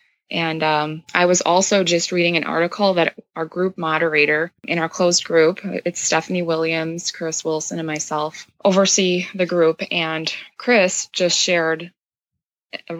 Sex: female